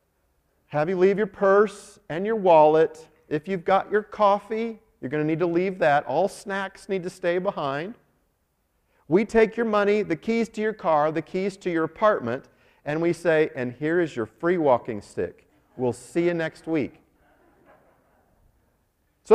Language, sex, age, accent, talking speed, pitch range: English, male, 40-59, American, 175 wpm, 125-190 Hz